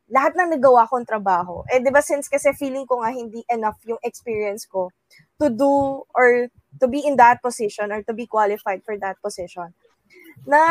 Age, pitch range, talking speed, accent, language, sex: 20-39, 210-275 Hz, 190 wpm, native, Filipino, female